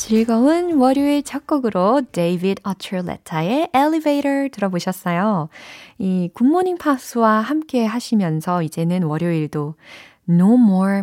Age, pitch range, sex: 20-39, 165-250 Hz, female